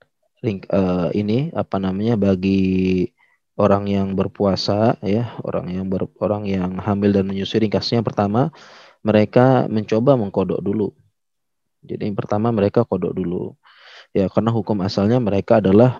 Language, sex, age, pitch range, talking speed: Indonesian, male, 20-39, 100-115 Hz, 140 wpm